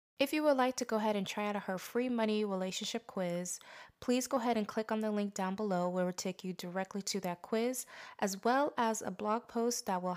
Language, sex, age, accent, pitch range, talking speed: English, female, 20-39, American, 185-225 Hz, 235 wpm